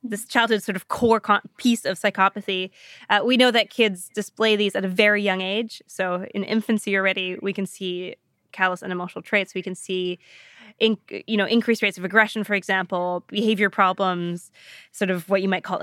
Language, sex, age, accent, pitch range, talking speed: English, female, 20-39, American, 185-220 Hz, 190 wpm